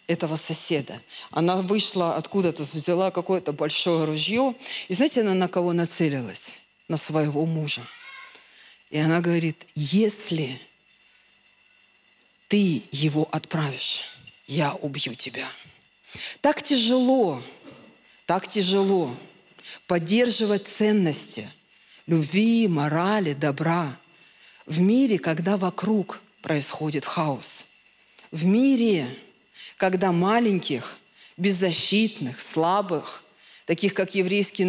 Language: Russian